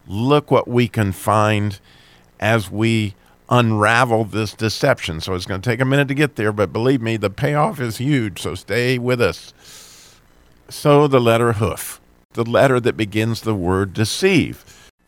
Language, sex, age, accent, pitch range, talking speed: English, male, 50-69, American, 90-120 Hz, 165 wpm